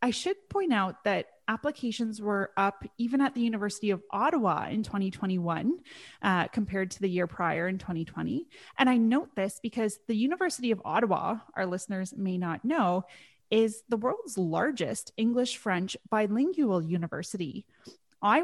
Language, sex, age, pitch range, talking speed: English, female, 30-49, 195-255 Hz, 150 wpm